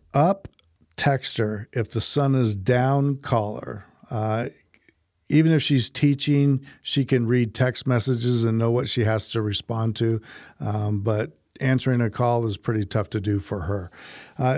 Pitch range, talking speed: 115-140 Hz, 170 wpm